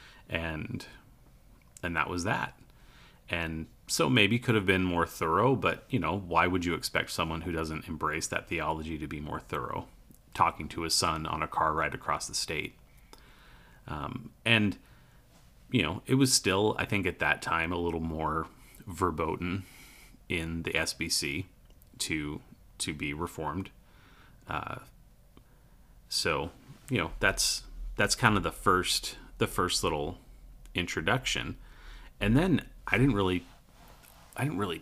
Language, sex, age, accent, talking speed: English, male, 30-49, American, 150 wpm